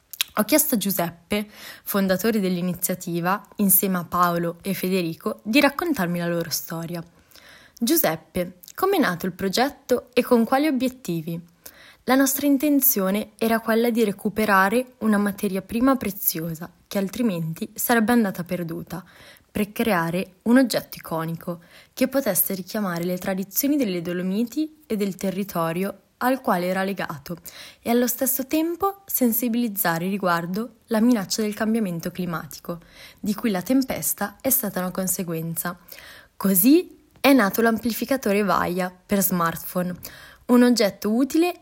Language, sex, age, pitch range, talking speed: Italian, female, 20-39, 180-240 Hz, 130 wpm